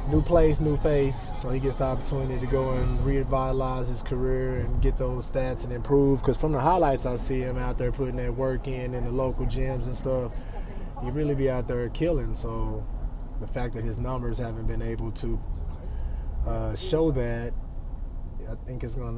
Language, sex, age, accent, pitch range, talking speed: English, male, 20-39, American, 110-130 Hz, 195 wpm